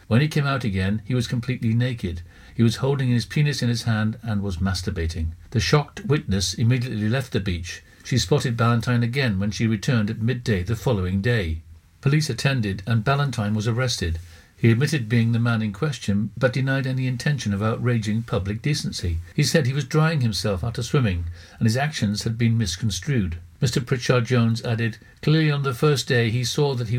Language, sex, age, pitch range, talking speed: English, male, 60-79, 105-135 Hz, 190 wpm